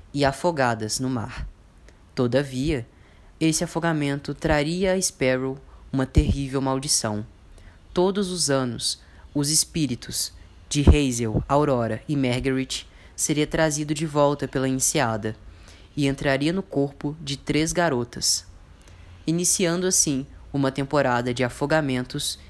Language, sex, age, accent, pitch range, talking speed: Portuguese, female, 10-29, Brazilian, 115-155 Hz, 110 wpm